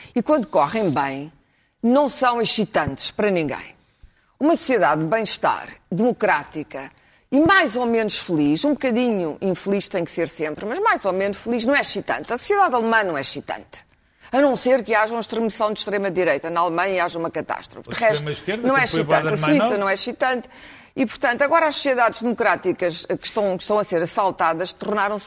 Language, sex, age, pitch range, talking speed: Portuguese, female, 40-59, 175-240 Hz, 185 wpm